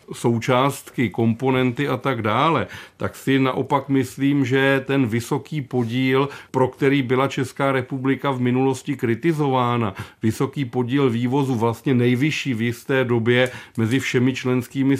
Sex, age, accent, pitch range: male, 40-59, native, 125-135 Hz